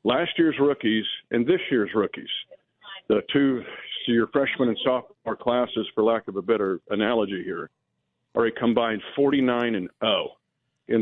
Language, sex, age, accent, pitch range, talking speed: English, male, 50-69, American, 115-140 Hz, 160 wpm